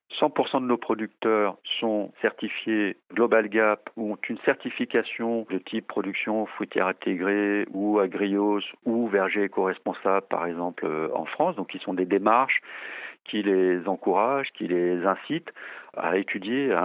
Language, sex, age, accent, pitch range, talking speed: French, male, 40-59, French, 95-115 Hz, 140 wpm